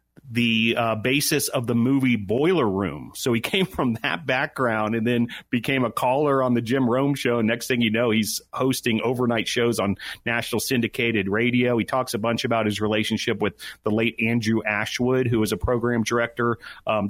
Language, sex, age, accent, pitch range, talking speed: English, male, 40-59, American, 110-135 Hz, 195 wpm